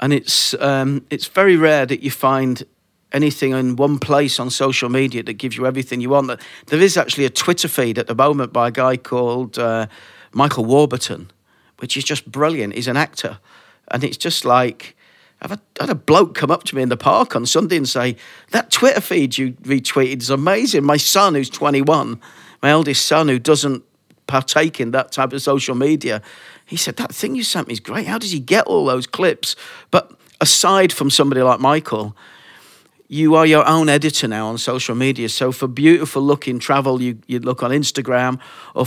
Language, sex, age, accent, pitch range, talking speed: English, male, 40-59, British, 125-150 Hz, 200 wpm